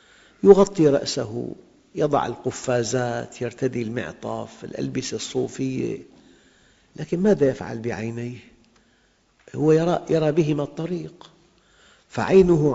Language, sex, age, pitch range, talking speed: Arabic, male, 50-69, 115-150 Hz, 85 wpm